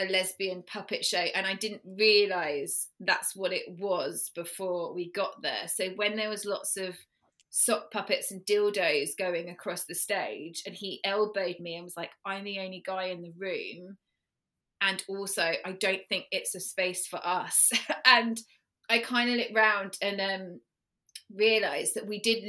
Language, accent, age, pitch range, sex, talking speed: English, British, 20-39, 185-215 Hz, female, 175 wpm